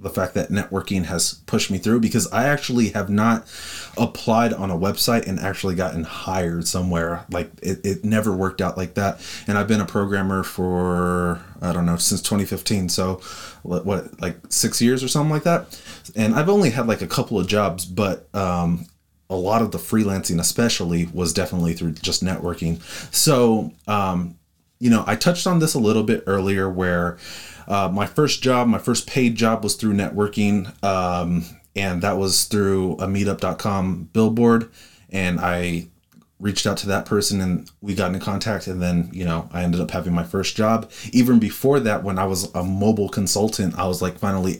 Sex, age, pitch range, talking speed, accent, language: male, 30-49, 90-105 Hz, 190 wpm, American, English